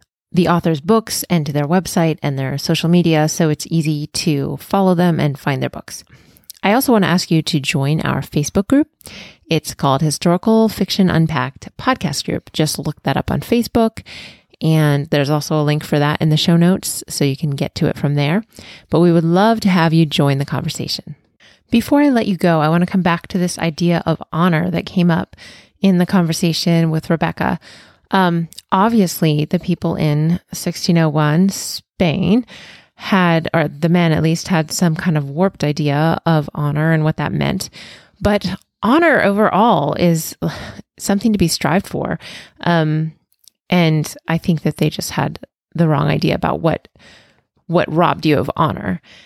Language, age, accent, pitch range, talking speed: English, 30-49, American, 155-190 Hz, 180 wpm